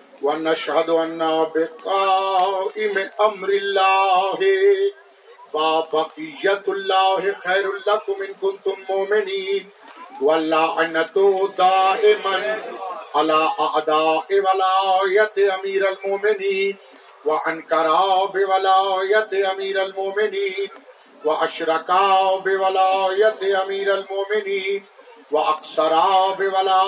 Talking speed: 55 wpm